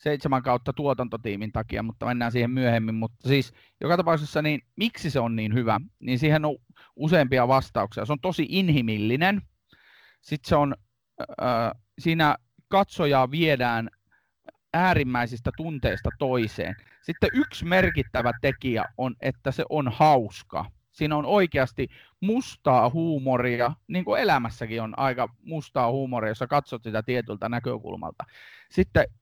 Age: 30-49